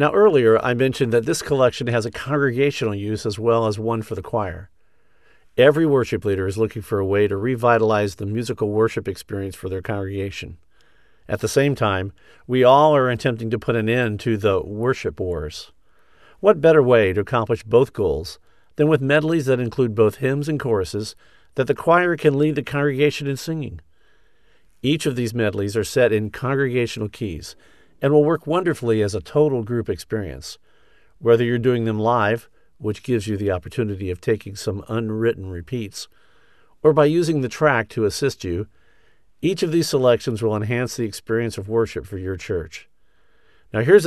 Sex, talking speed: male, 180 wpm